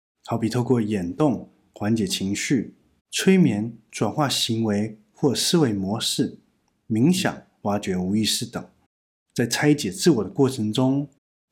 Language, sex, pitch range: Chinese, male, 105-135 Hz